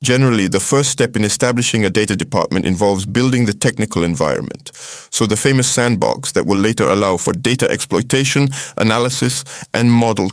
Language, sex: French, male